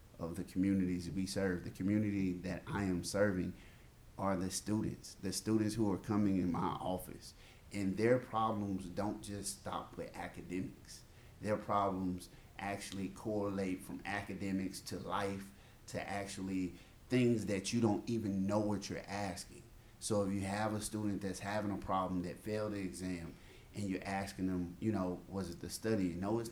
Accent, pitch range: American, 90-105 Hz